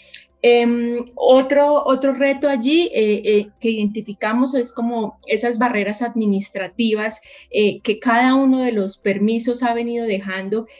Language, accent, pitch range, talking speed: Spanish, Colombian, 195-230 Hz, 130 wpm